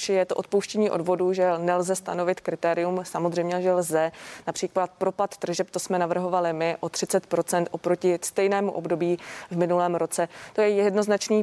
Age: 20-39